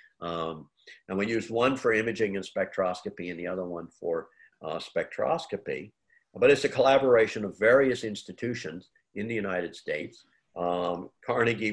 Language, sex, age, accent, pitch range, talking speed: English, male, 50-69, American, 95-135 Hz, 150 wpm